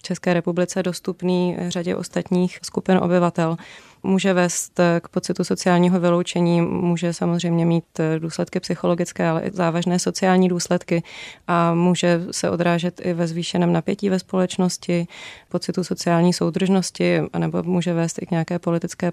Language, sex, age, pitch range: Czech, female, 20-39, 170-185 Hz